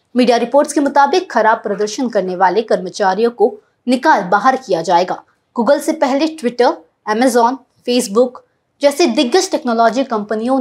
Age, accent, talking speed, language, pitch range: 20-39, native, 115 wpm, Hindi, 215-285 Hz